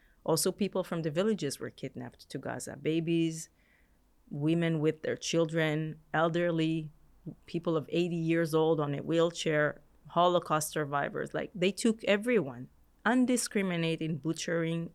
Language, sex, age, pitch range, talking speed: Greek, female, 30-49, 145-170 Hz, 125 wpm